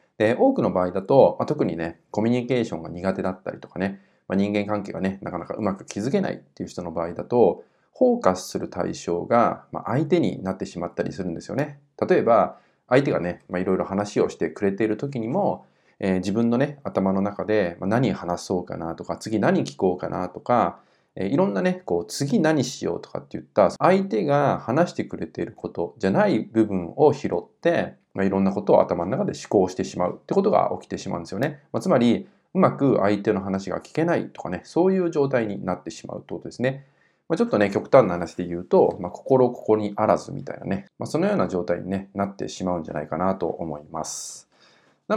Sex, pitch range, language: male, 90-125 Hz, Japanese